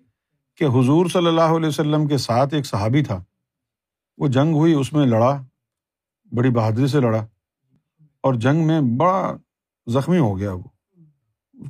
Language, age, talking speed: Urdu, 50-69, 155 wpm